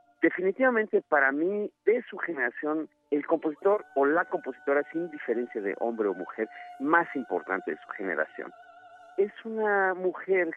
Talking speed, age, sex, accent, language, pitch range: 140 wpm, 50-69, male, Mexican, Spanish, 120-180 Hz